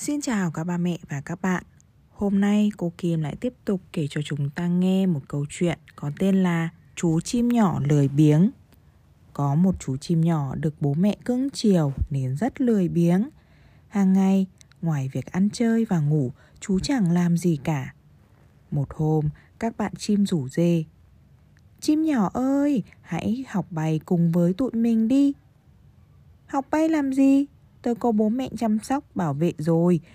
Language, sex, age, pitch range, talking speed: Vietnamese, female, 20-39, 155-215 Hz, 175 wpm